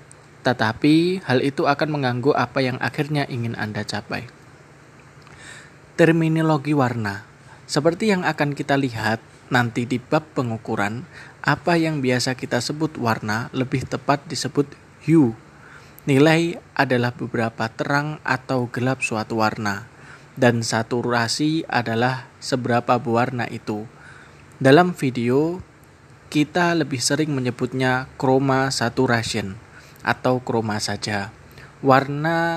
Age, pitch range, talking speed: 20-39, 120-150 Hz, 105 wpm